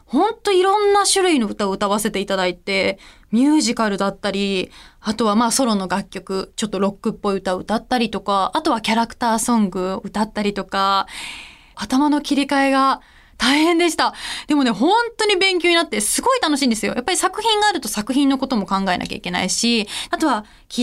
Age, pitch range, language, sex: 20-39, 205-310 Hz, Japanese, female